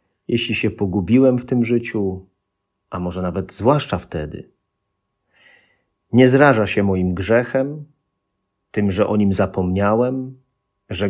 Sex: male